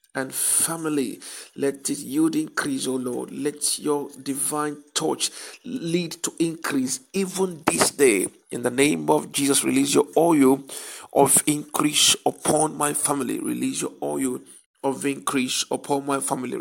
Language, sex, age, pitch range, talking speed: English, male, 50-69, 130-165 Hz, 140 wpm